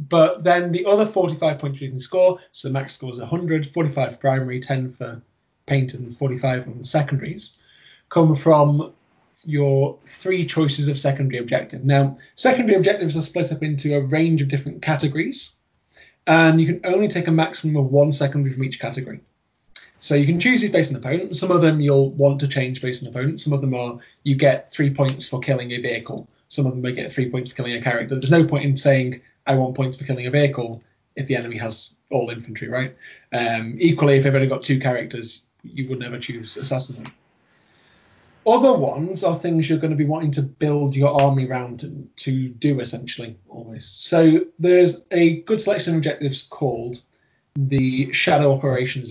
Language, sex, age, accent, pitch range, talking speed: English, male, 20-39, British, 130-160 Hz, 195 wpm